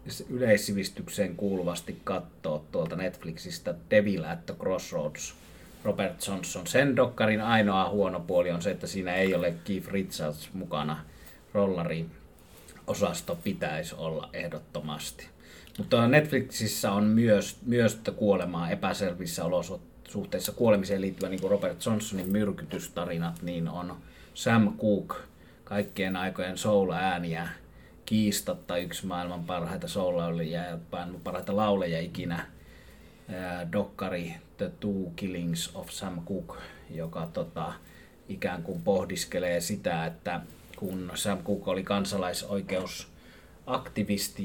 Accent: native